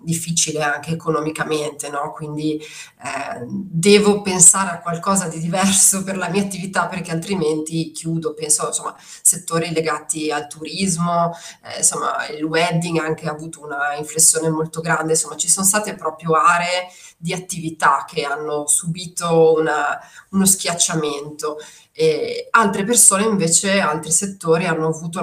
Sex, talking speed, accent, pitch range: female, 140 wpm, native, 160-185 Hz